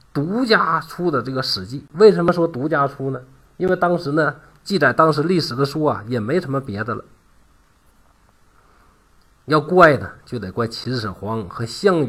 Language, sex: Chinese, male